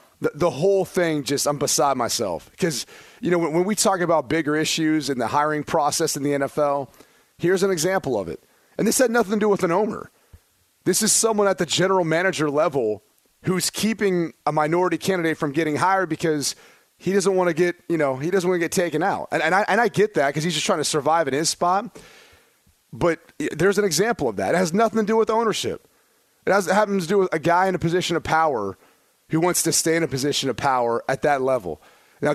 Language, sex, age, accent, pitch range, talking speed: English, male, 30-49, American, 145-185 Hz, 230 wpm